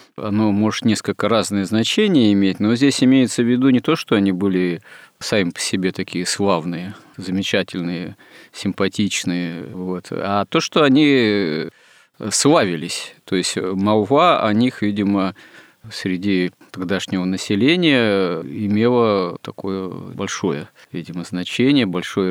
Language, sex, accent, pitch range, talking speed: Russian, male, native, 95-115 Hz, 120 wpm